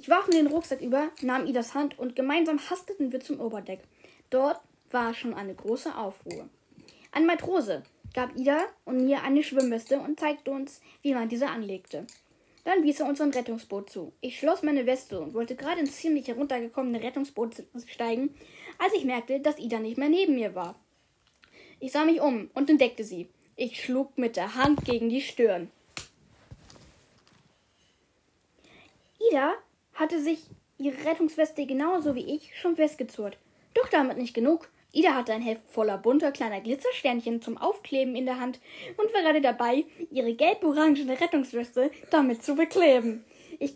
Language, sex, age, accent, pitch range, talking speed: German, female, 10-29, German, 240-305 Hz, 160 wpm